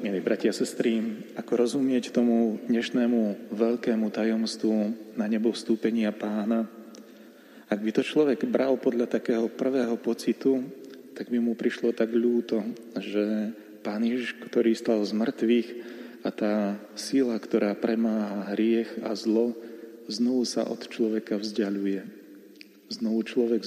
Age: 30-49